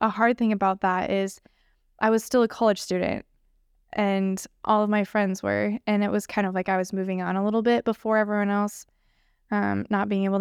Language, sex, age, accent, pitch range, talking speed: English, female, 10-29, American, 190-220 Hz, 220 wpm